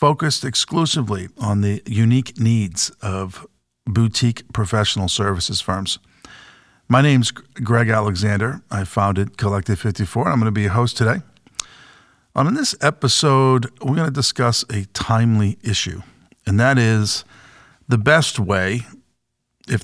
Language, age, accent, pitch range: English, 50-69, American, 100-125 Hz